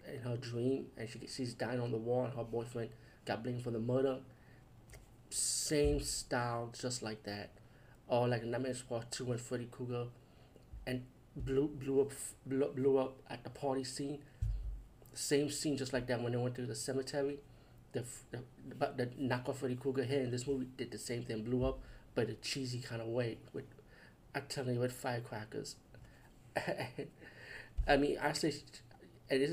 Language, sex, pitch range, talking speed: English, male, 120-135 Hz, 175 wpm